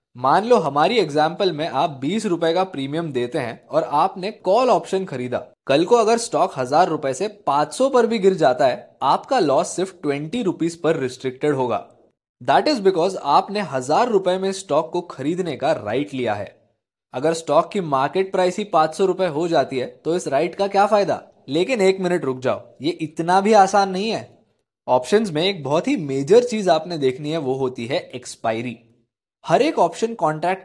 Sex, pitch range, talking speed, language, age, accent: male, 140-195 Hz, 195 wpm, Hindi, 20-39, native